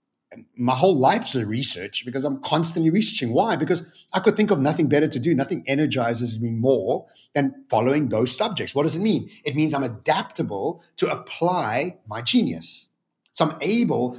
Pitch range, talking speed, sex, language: 125-160 Hz, 180 wpm, male, English